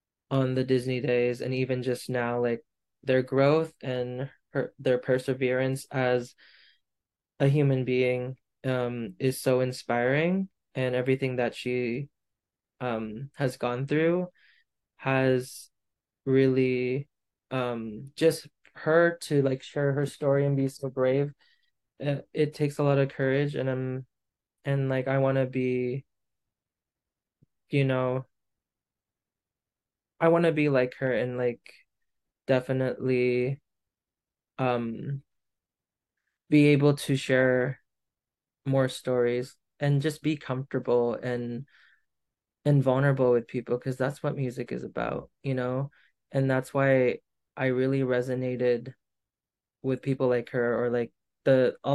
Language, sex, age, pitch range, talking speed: English, male, 20-39, 125-140 Hz, 125 wpm